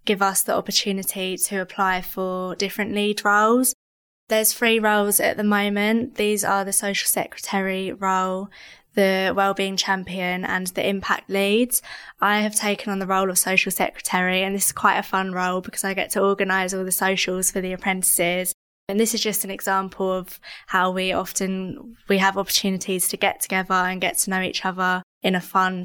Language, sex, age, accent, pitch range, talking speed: English, female, 20-39, British, 185-200 Hz, 190 wpm